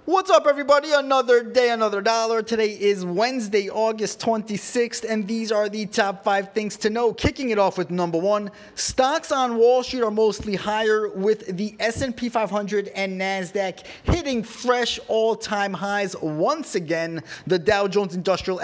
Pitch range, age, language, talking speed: 175-225 Hz, 20-39, English, 160 wpm